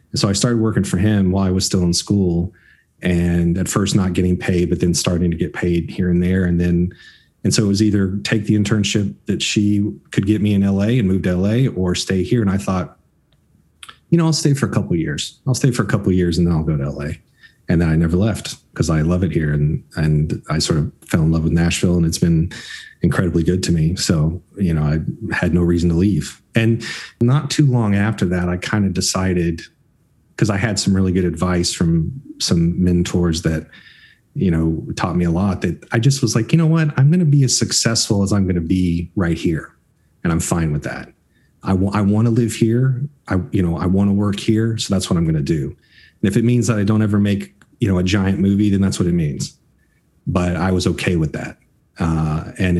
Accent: American